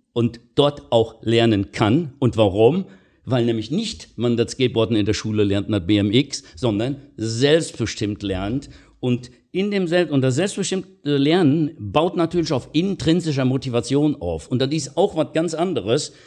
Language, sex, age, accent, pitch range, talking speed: German, male, 50-69, German, 120-165 Hz, 160 wpm